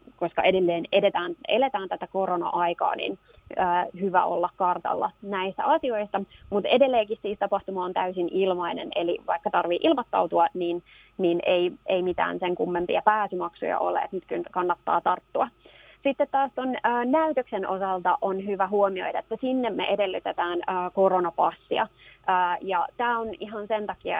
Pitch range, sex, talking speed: 180-215 Hz, female, 145 wpm